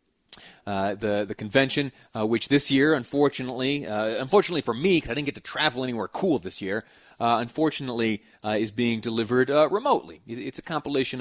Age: 30-49